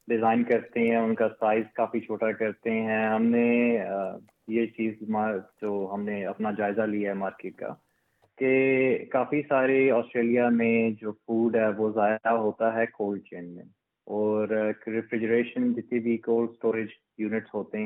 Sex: male